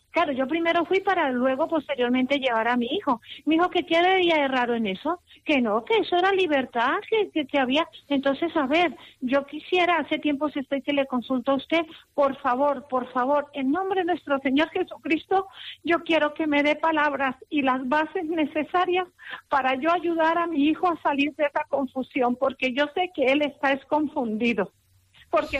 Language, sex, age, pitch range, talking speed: Spanish, female, 50-69, 265-325 Hz, 190 wpm